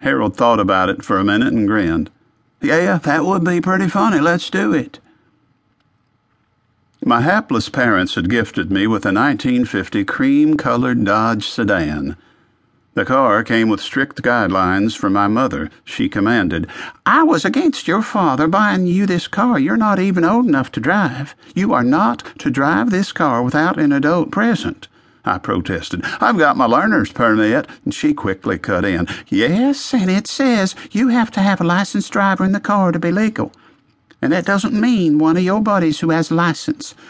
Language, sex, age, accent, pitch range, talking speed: English, male, 50-69, American, 150-235 Hz, 175 wpm